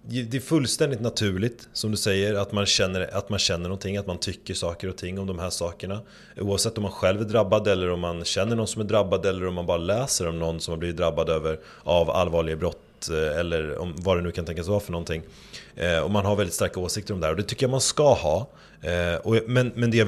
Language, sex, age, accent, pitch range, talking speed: Swedish, male, 30-49, native, 90-115 Hz, 255 wpm